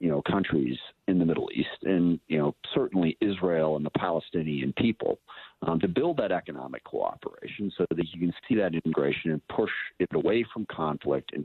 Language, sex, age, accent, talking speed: English, male, 50-69, American, 190 wpm